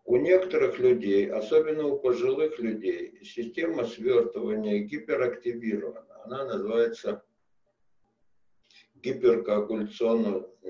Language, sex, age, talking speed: Russian, male, 60-79, 75 wpm